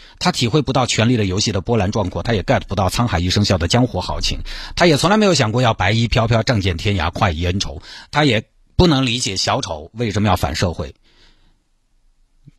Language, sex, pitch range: Chinese, male, 95-145 Hz